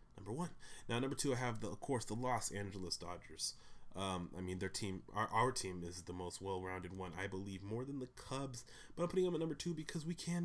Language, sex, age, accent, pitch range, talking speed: English, male, 20-39, American, 115-145 Hz, 245 wpm